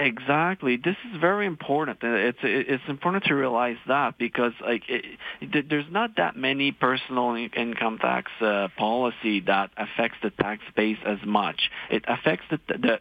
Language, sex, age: English, male, 40-59